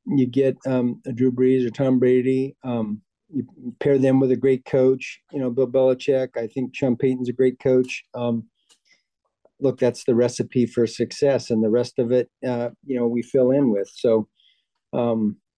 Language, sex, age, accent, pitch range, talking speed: English, male, 50-69, American, 115-130 Hz, 190 wpm